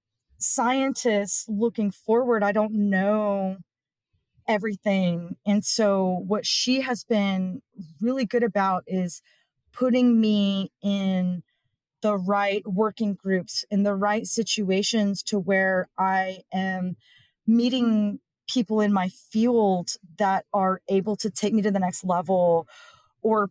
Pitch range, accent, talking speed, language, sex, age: 190-220 Hz, American, 125 wpm, English, female, 30-49